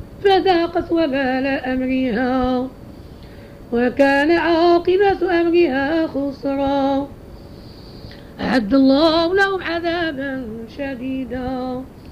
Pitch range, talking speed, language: 270-335 Hz, 60 wpm, Arabic